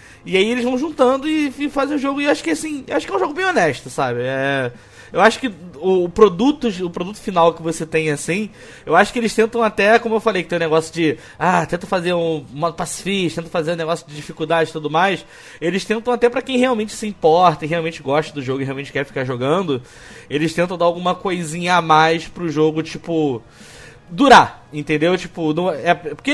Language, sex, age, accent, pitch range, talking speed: Portuguese, male, 20-39, Brazilian, 150-225 Hz, 230 wpm